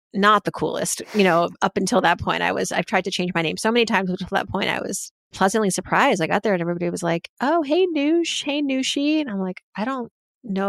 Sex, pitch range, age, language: female, 180-210 Hz, 30-49, English